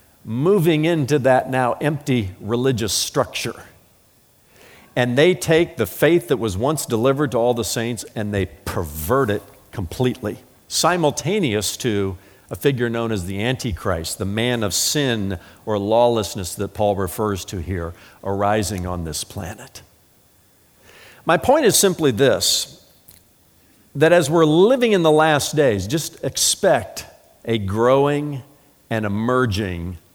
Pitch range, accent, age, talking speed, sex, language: 100-135 Hz, American, 50-69, 135 wpm, male, English